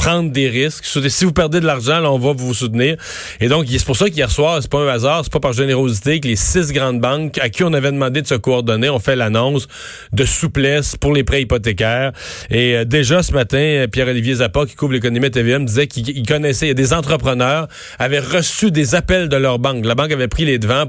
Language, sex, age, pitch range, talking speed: French, male, 30-49, 115-145 Hz, 235 wpm